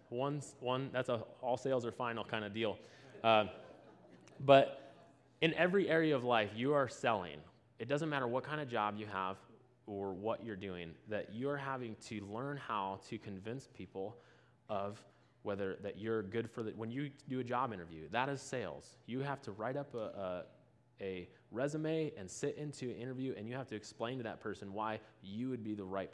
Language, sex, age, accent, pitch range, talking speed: English, male, 20-39, American, 100-125 Hz, 195 wpm